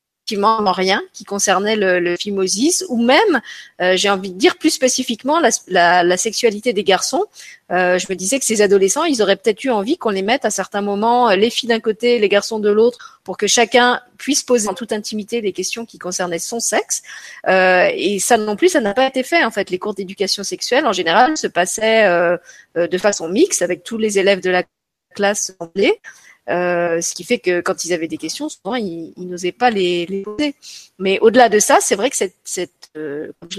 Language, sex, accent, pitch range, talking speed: French, female, French, 180-245 Hz, 220 wpm